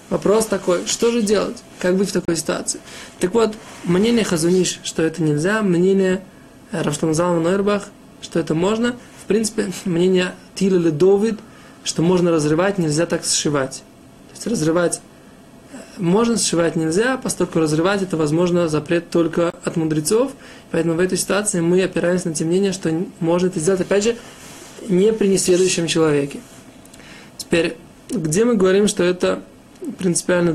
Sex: male